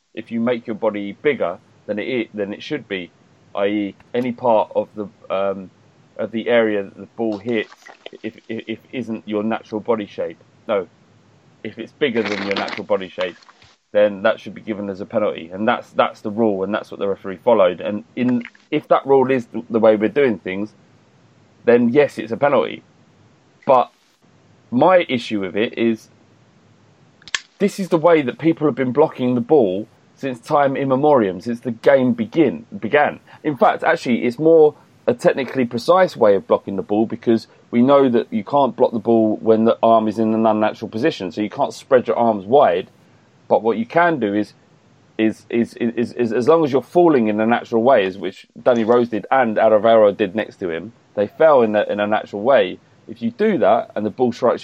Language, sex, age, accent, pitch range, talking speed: English, male, 30-49, British, 105-135 Hz, 205 wpm